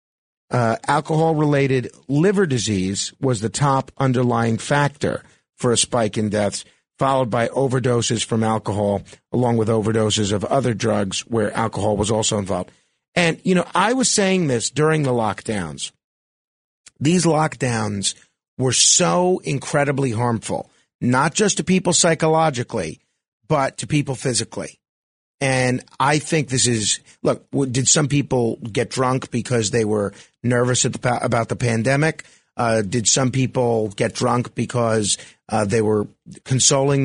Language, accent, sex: English, American, male